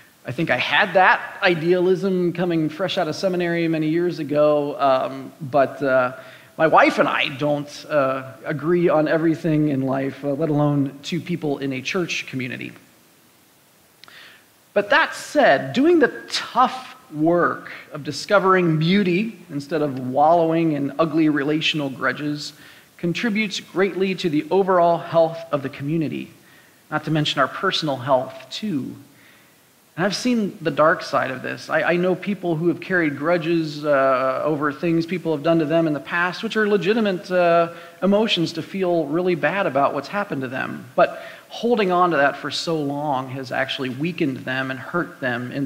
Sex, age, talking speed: male, 40-59, 165 wpm